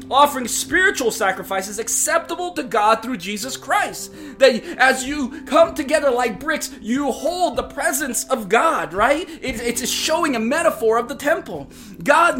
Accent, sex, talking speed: American, male, 150 wpm